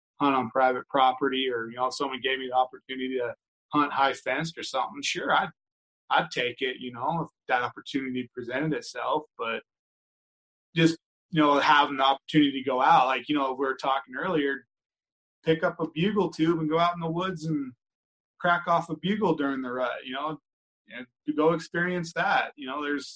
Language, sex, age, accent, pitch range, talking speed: English, male, 20-39, American, 130-155 Hz, 195 wpm